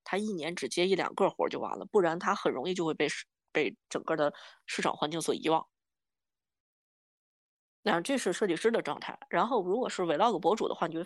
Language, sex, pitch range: Chinese, female, 160-225 Hz